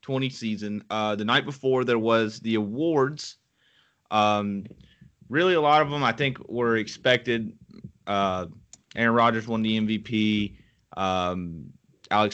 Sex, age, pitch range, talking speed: male, 30-49, 100-120 Hz, 135 wpm